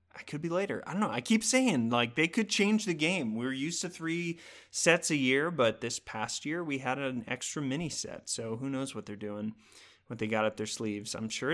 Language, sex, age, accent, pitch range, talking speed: English, male, 30-49, American, 115-155 Hz, 245 wpm